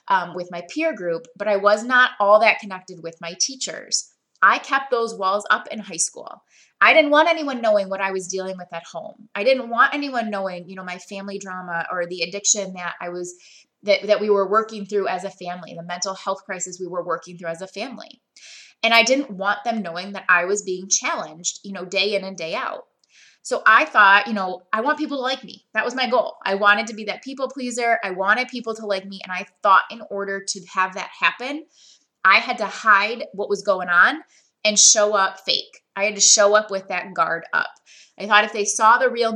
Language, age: English, 20-39